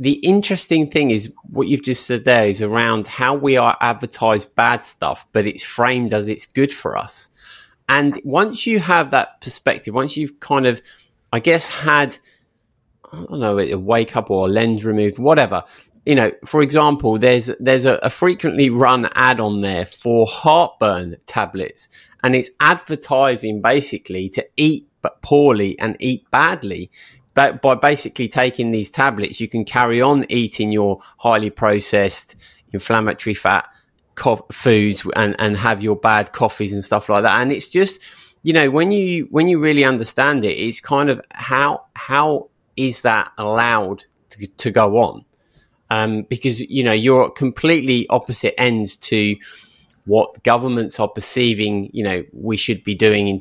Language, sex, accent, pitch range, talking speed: English, male, British, 105-140 Hz, 165 wpm